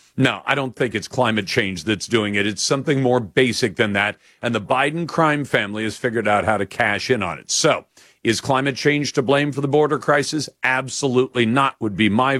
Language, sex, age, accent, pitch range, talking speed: English, male, 50-69, American, 120-155 Hz, 220 wpm